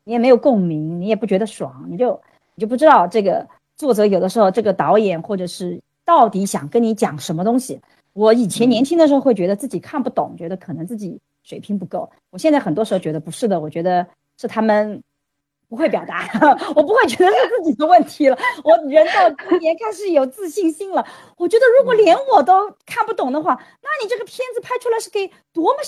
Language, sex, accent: Chinese, female, native